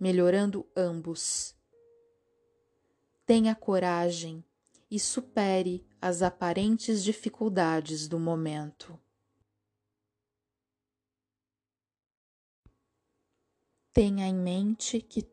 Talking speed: 60 wpm